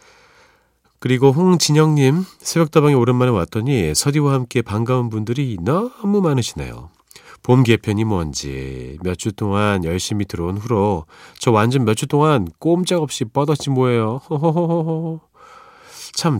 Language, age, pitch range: Korean, 40-59, 80-130 Hz